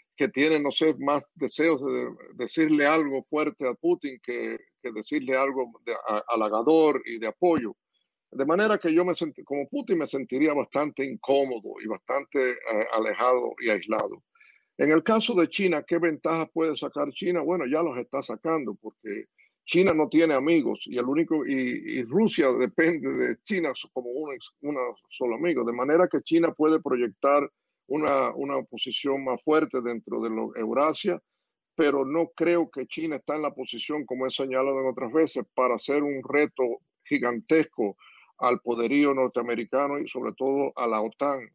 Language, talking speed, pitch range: Spanish, 170 wpm, 125-160 Hz